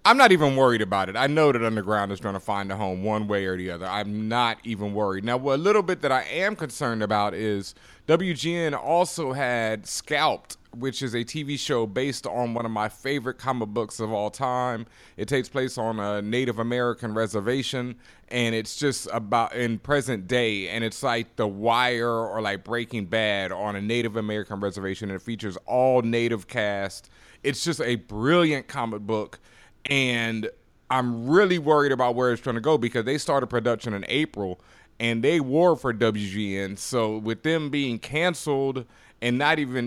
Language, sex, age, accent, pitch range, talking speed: English, male, 30-49, American, 110-135 Hz, 185 wpm